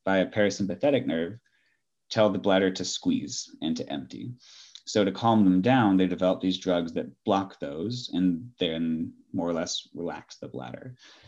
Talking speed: 170 wpm